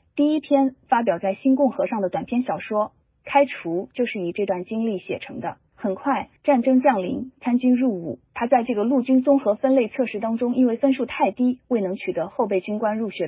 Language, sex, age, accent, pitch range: Chinese, female, 30-49, native, 195-260 Hz